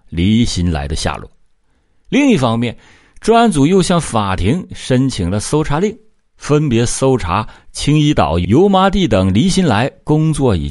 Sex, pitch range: male, 90-140 Hz